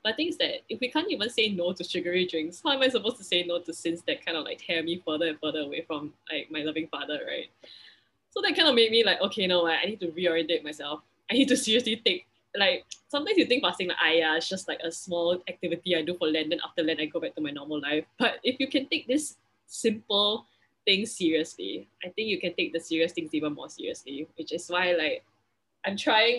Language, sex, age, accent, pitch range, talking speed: English, female, 10-29, Malaysian, 160-200 Hz, 255 wpm